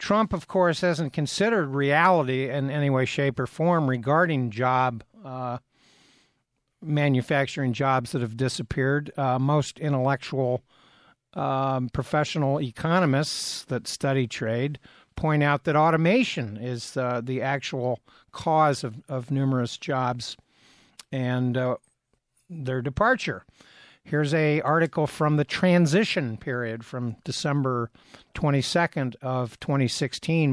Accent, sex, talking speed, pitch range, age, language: American, male, 115 wpm, 125-150 Hz, 50-69, English